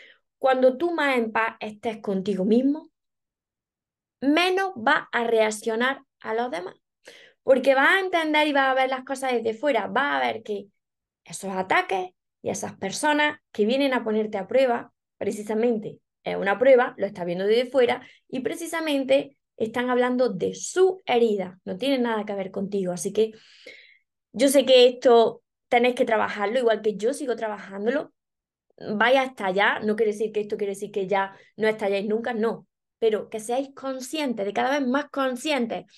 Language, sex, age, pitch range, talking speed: Spanish, female, 20-39, 210-265 Hz, 170 wpm